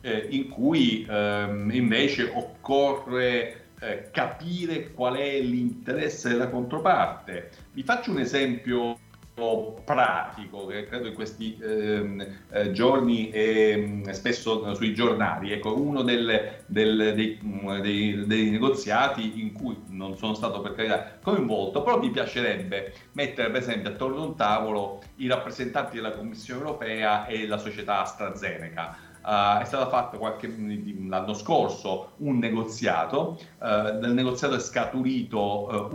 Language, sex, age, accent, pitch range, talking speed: Italian, male, 40-59, native, 105-130 Hz, 130 wpm